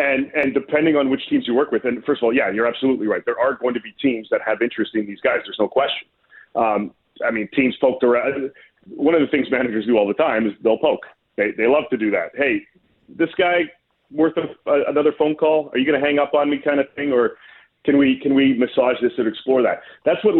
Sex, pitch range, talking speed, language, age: male, 120-145 Hz, 255 wpm, English, 40-59